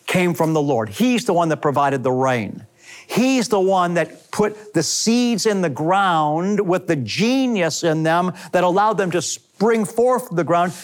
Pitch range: 150-205 Hz